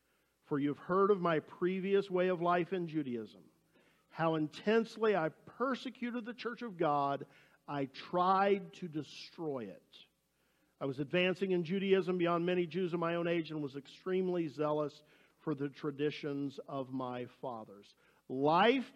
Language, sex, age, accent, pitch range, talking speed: English, male, 50-69, American, 160-210 Hz, 150 wpm